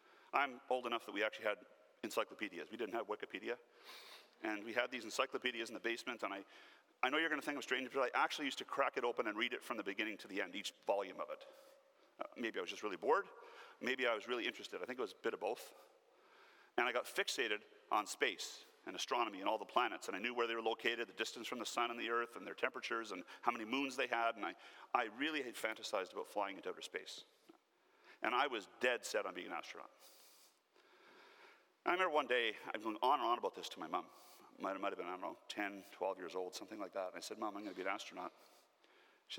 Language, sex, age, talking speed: English, male, 40-59, 255 wpm